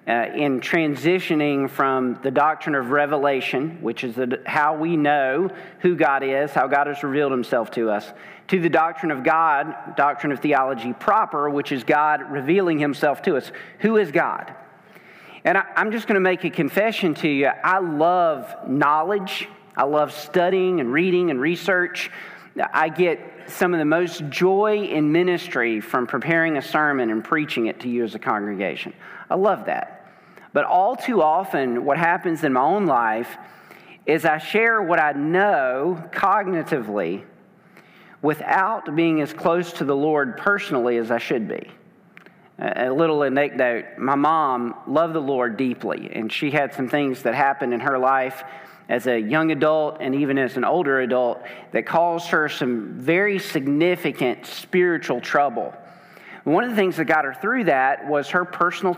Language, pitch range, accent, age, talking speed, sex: English, 135-175 Hz, American, 40-59, 165 wpm, male